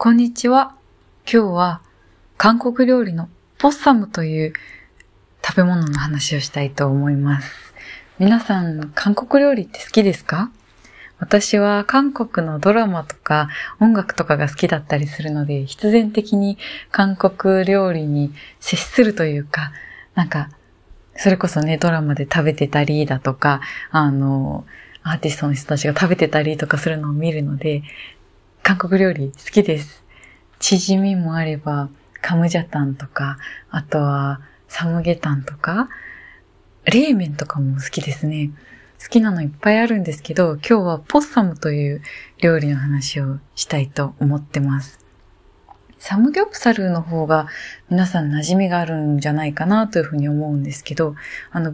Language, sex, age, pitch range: Japanese, female, 20-39, 145-200 Hz